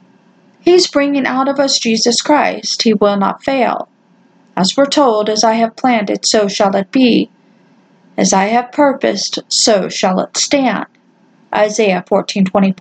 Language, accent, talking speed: English, American, 155 wpm